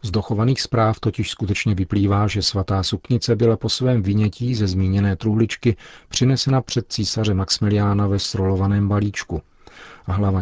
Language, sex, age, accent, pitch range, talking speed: Czech, male, 40-59, native, 100-115 Hz, 140 wpm